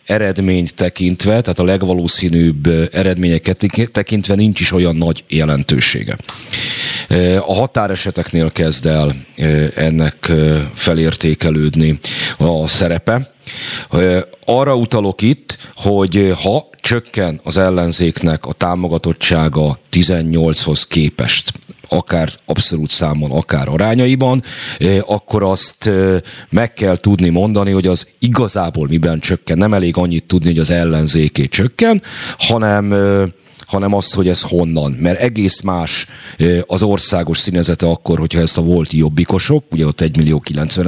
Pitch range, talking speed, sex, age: 80-100 Hz, 115 wpm, male, 40-59